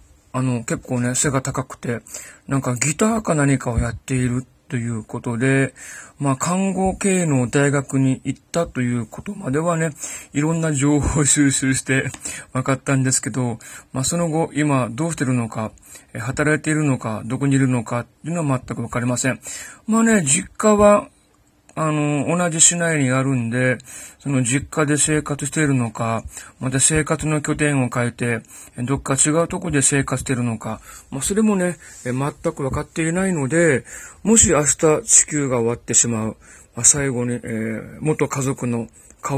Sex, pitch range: male, 125-155 Hz